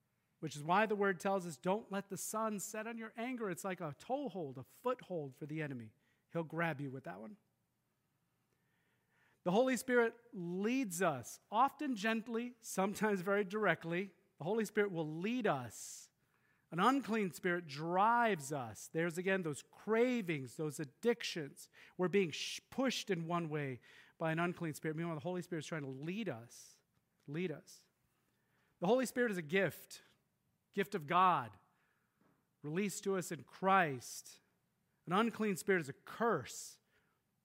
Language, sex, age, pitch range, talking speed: English, male, 40-59, 155-205 Hz, 155 wpm